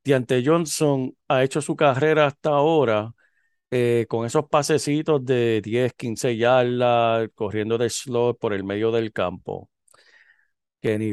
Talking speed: 135 wpm